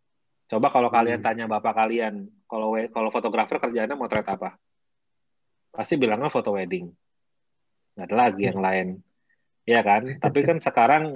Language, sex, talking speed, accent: Indonesian, male, 140 wpm, native